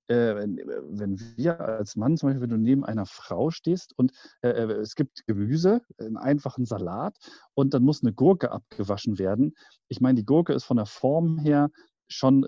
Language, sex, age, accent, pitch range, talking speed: German, male, 40-59, German, 110-140 Hz, 185 wpm